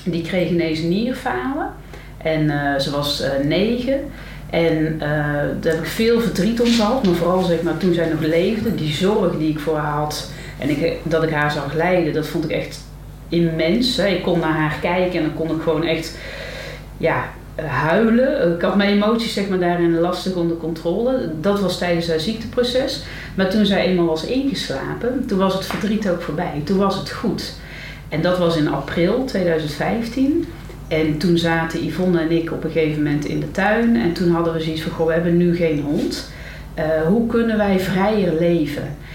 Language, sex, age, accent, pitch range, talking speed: Dutch, female, 40-59, Dutch, 160-205 Hz, 195 wpm